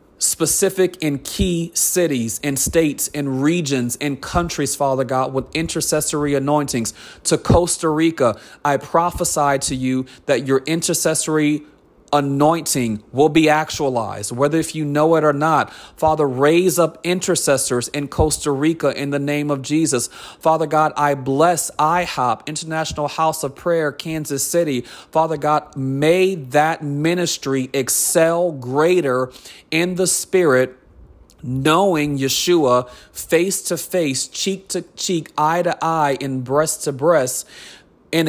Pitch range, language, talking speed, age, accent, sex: 135-170 Hz, English, 120 wpm, 30-49, American, male